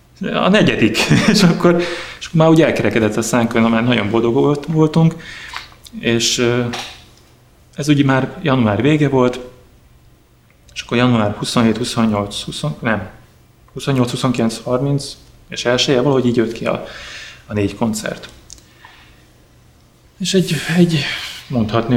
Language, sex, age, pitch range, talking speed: Hungarian, male, 30-49, 110-135 Hz, 130 wpm